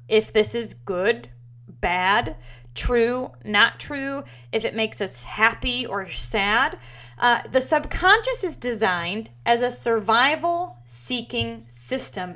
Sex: female